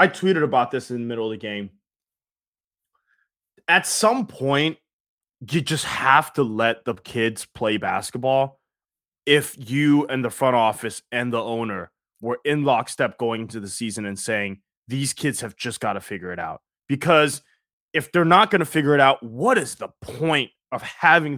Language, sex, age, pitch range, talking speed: English, male, 20-39, 125-190 Hz, 180 wpm